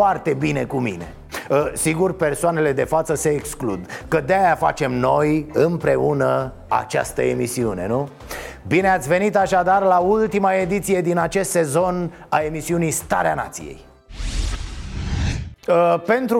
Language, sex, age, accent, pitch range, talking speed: Romanian, male, 30-49, native, 165-230 Hz, 120 wpm